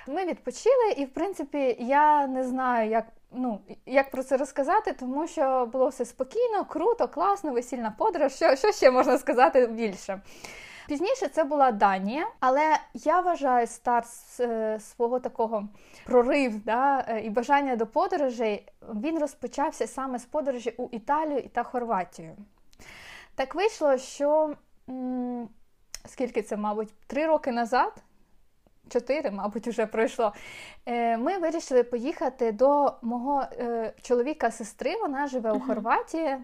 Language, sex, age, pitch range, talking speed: Ukrainian, female, 20-39, 240-300 Hz, 130 wpm